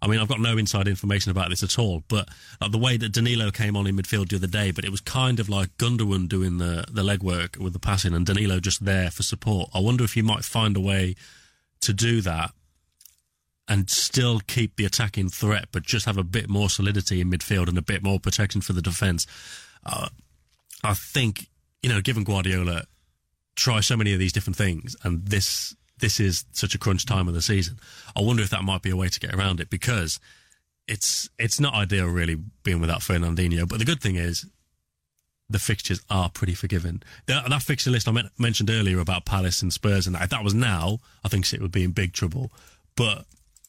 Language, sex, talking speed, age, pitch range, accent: English, male, 220 wpm, 30-49, 90-110 Hz, British